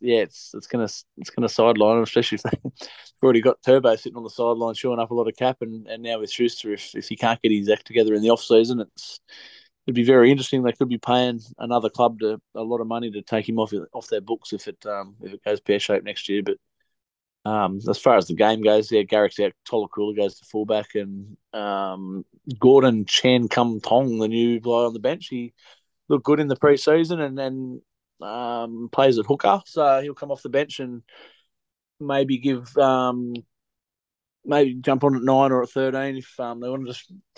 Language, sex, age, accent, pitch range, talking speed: English, male, 20-39, Australian, 110-135 Hz, 220 wpm